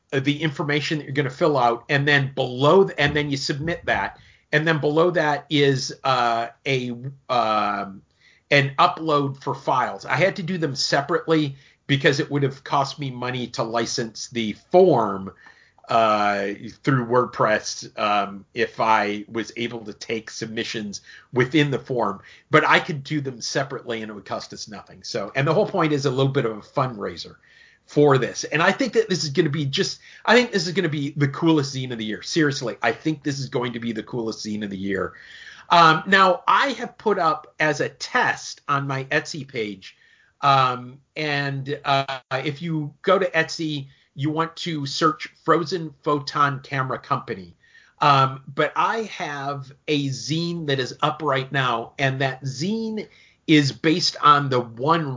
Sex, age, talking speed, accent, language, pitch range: male, 40-59, 185 wpm, American, English, 125-155 Hz